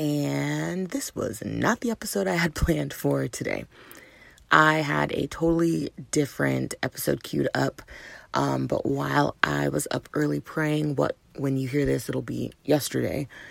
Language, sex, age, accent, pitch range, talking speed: English, female, 30-49, American, 130-155 Hz, 155 wpm